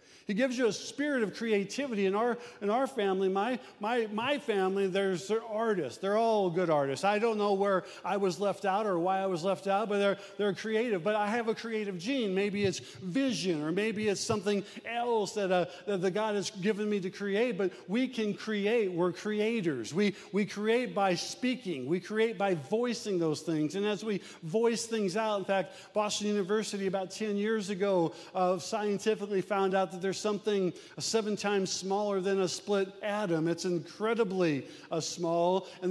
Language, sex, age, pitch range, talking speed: English, male, 40-59, 190-220 Hz, 190 wpm